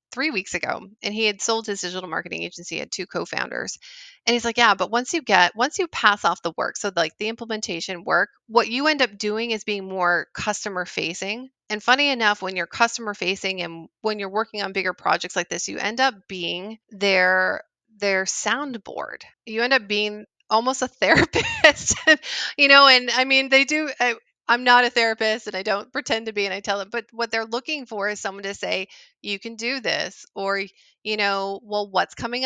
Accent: American